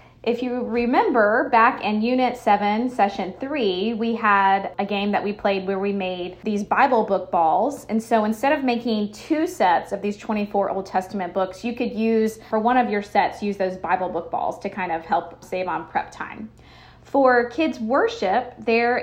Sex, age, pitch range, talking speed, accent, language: female, 20-39, 195-245 Hz, 190 wpm, American, English